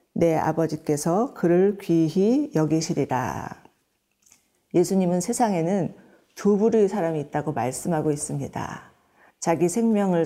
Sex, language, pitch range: female, Korean, 155-215 Hz